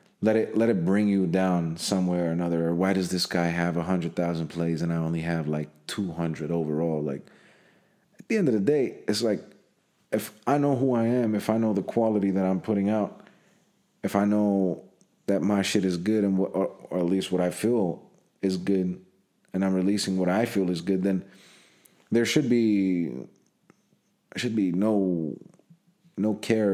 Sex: male